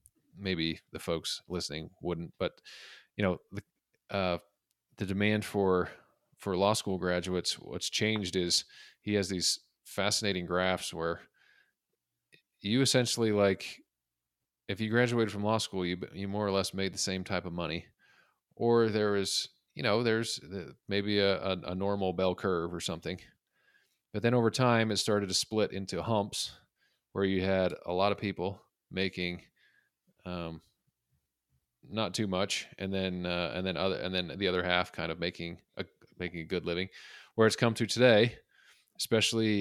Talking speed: 165 wpm